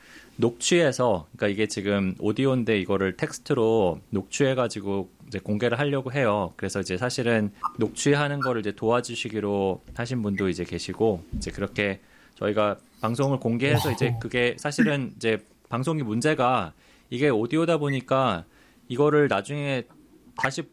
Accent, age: native, 20-39